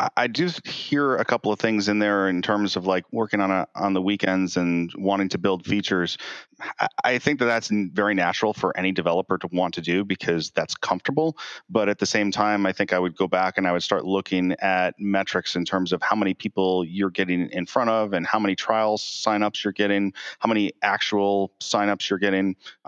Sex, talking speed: male, 220 wpm